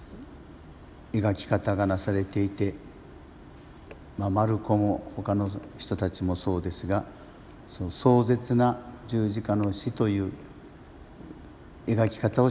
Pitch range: 95-110 Hz